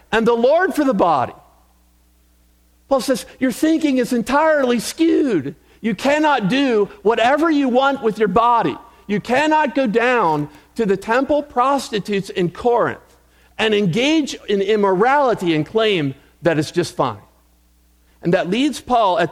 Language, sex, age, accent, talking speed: English, male, 50-69, American, 145 wpm